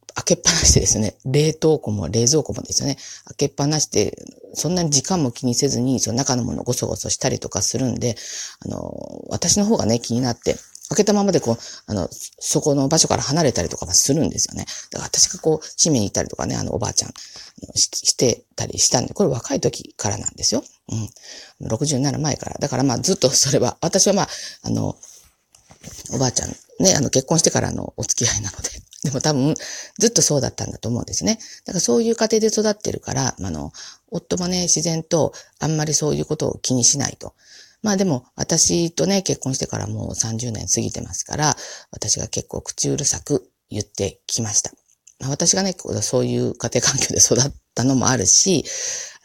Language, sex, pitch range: Japanese, female, 115-160 Hz